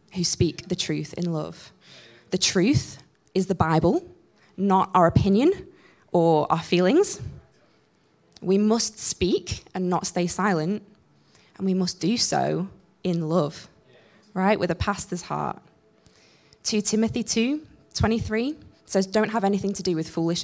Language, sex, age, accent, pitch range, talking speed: English, female, 20-39, British, 160-210 Hz, 145 wpm